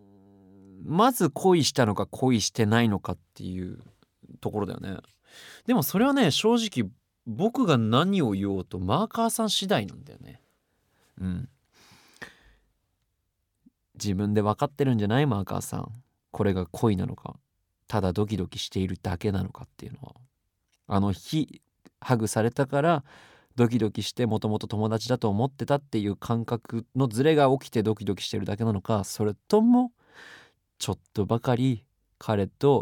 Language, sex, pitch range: Japanese, male, 95-125 Hz